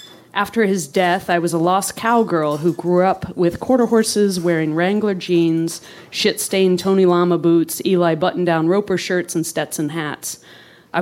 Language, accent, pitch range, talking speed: English, American, 165-200 Hz, 160 wpm